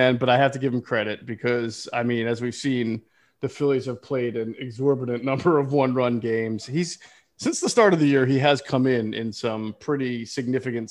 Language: English